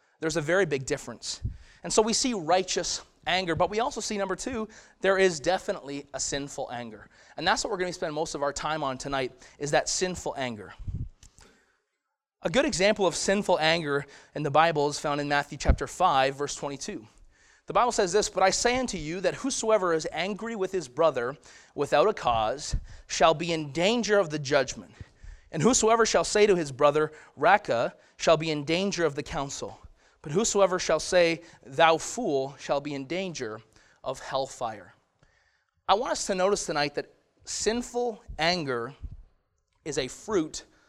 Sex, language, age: male, English, 30-49